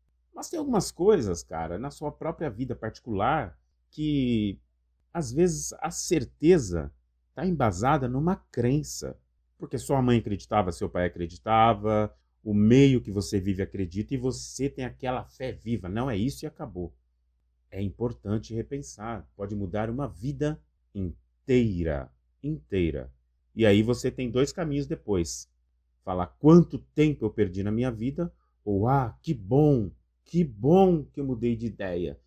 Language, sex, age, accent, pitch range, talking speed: Portuguese, male, 30-49, Brazilian, 85-130 Hz, 145 wpm